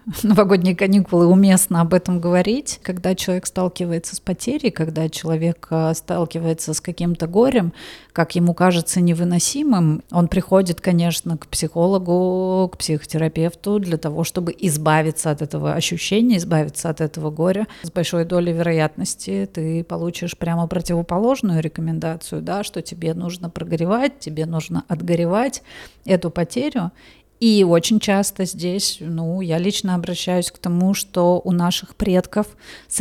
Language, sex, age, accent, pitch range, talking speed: Russian, female, 30-49, native, 165-190 Hz, 130 wpm